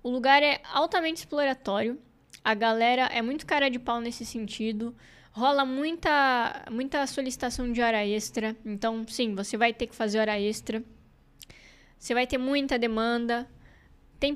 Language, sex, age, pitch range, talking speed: Portuguese, female, 10-29, 225-275 Hz, 150 wpm